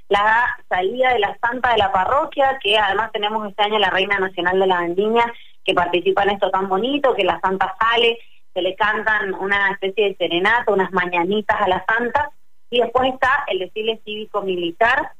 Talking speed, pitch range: 185 wpm, 190-240 Hz